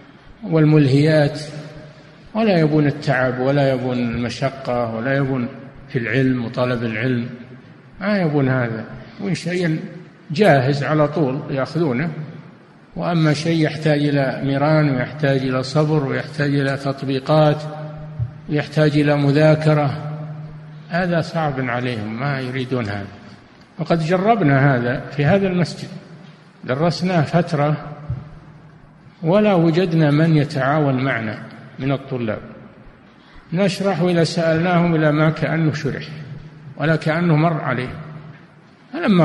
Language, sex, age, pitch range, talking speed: Arabic, male, 50-69, 135-165 Hz, 105 wpm